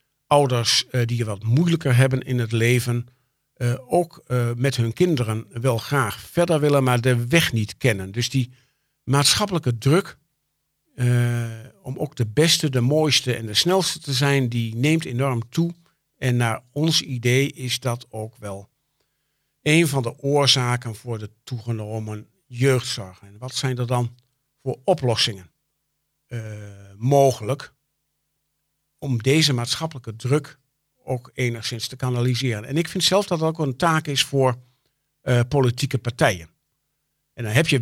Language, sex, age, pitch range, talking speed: Dutch, male, 50-69, 120-150 Hz, 150 wpm